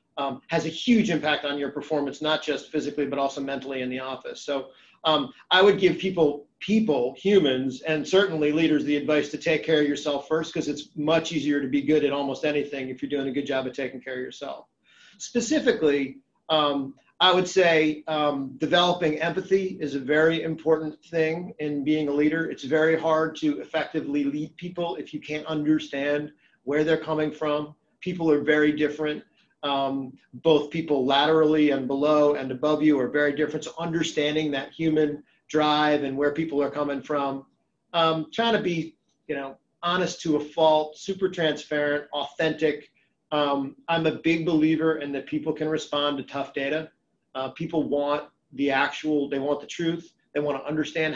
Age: 40-59